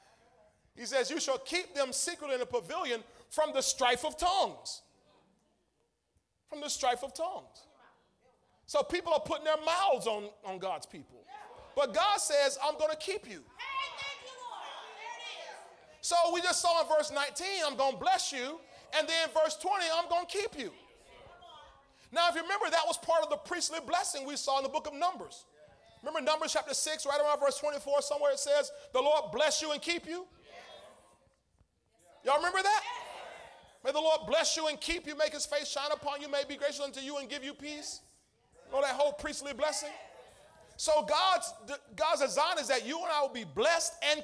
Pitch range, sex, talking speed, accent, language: 275-330 Hz, male, 190 wpm, American, English